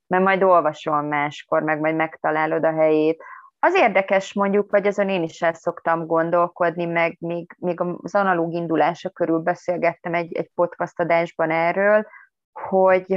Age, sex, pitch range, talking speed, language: 30-49, female, 155-185 Hz, 150 wpm, Hungarian